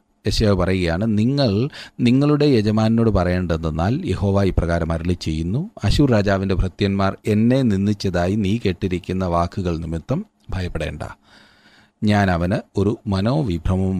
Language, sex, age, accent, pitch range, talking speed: Malayalam, male, 40-59, native, 90-115 Hz, 100 wpm